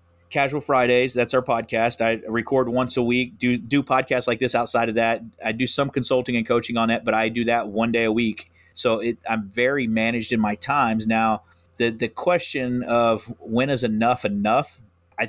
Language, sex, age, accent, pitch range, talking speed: English, male, 30-49, American, 110-130 Hz, 205 wpm